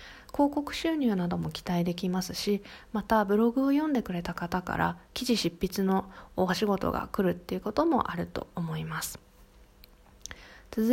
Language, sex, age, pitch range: Japanese, female, 20-39, 175-245 Hz